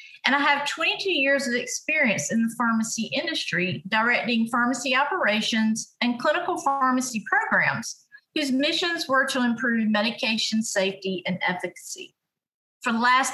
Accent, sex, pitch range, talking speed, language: American, female, 210-280 Hz, 135 wpm, English